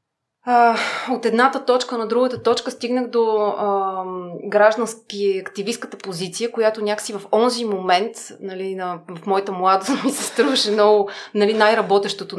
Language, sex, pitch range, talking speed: Bulgarian, female, 180-230 Hz, 135 wpm